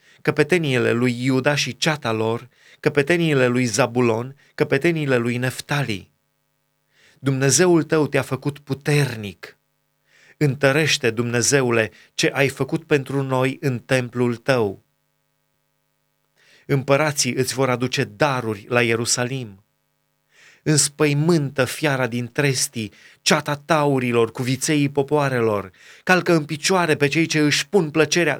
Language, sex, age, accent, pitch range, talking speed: Romanian, male, 30-49, native, 130-155 Hz, 110 wpm